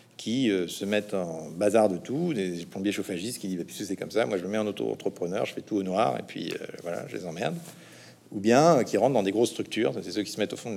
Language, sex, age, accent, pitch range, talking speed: French, male, 50-69, French, 100-135 Hz, 295 wpm